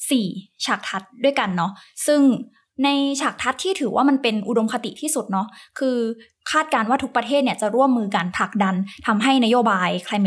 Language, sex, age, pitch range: Thai, female, 20-39, 200-250 Hz